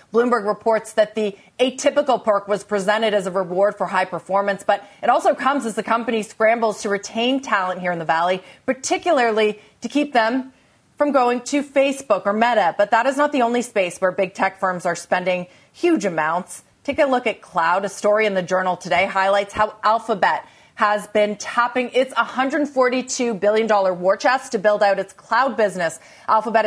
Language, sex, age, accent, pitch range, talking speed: English, female, 30-49, American, 195-245 Hz, 185 wpm